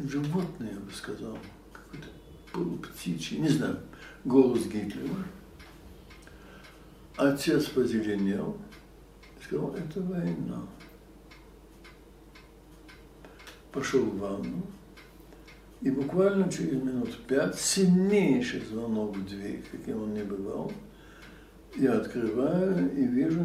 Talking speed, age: 90 wpm, 60-79